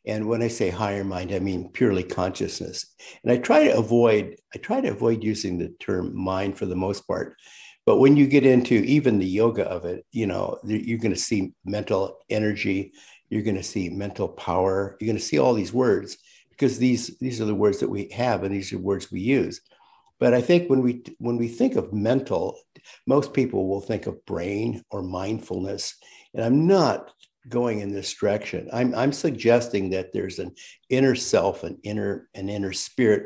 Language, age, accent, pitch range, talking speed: English, 60-79, American, 95-120 Hz, 200 wpm